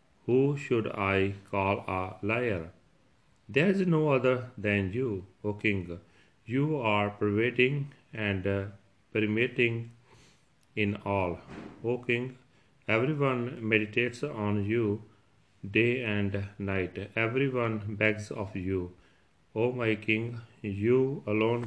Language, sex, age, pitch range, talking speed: Punjabi, male, 40-59, 100-120 Hz, 110 wpm